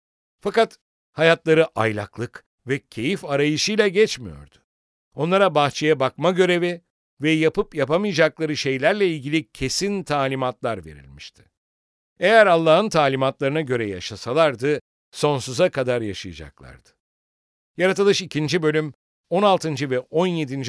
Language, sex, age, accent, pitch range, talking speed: English, male, 60-79, Turkish, 105-165 Hz, 95 wpm